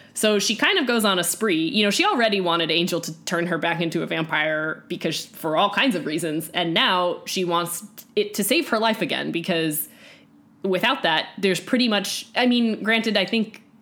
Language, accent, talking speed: English, American, 210 wpm